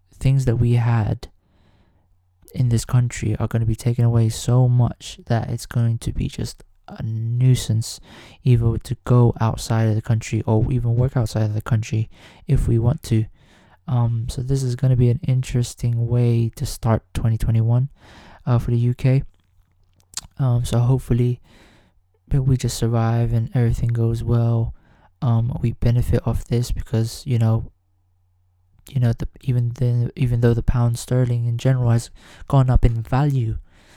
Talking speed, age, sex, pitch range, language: 165 wpm, 20-39, male, 110-125 Hz, English